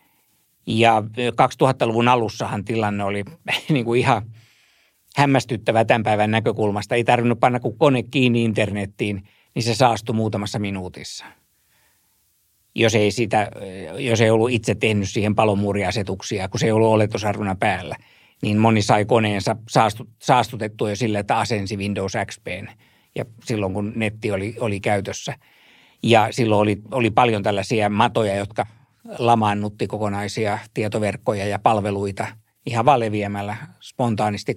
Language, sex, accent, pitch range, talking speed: Finnish, male, native, 105-115 Hz, 130 wpm